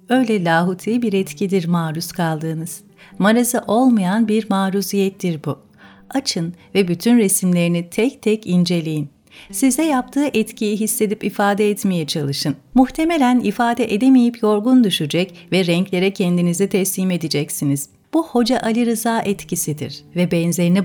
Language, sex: Turkish, female